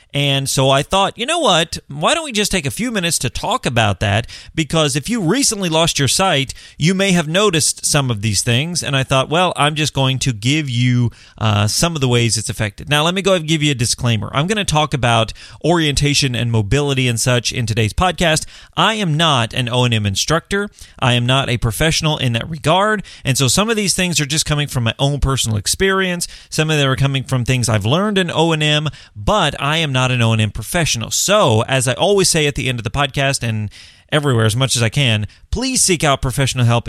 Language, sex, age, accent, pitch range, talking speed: English, male, 30-49, American, 115-165 Hz, 240 wpm